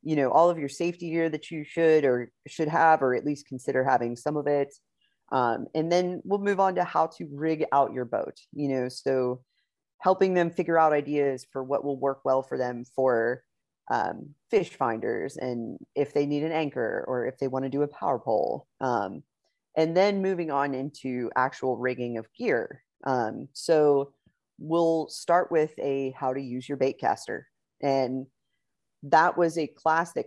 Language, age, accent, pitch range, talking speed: English, 30-49, American, 130-165 Hz, 190 wpm